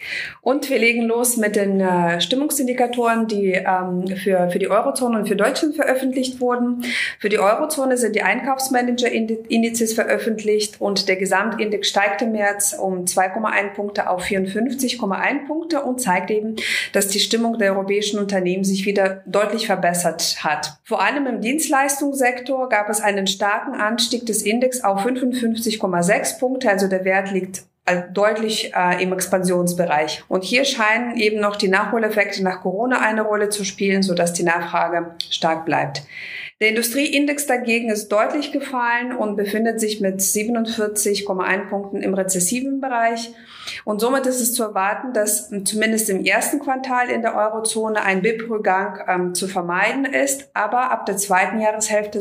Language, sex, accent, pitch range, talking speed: German, female, German, 185-235 Hz, 150 wpm